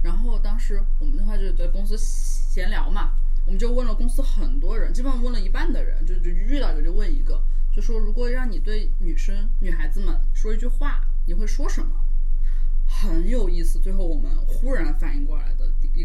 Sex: female